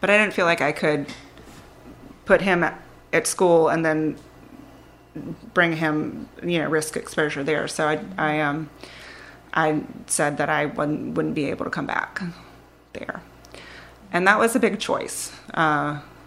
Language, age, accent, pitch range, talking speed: English, 30-49, American, 150-175 Hz, 160 wpm